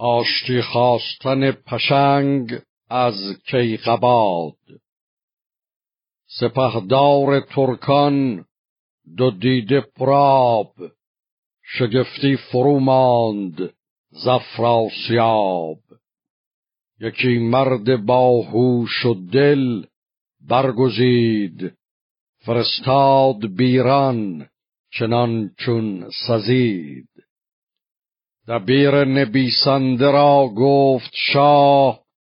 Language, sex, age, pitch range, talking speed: Persian, male, 60-79, 120-135 Hz, 55 wpm